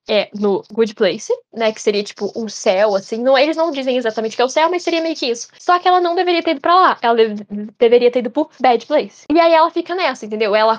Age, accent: 10-29, Brazilian